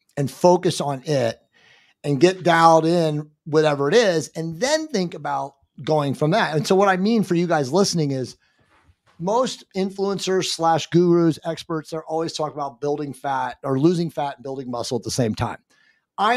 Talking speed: 180 wpm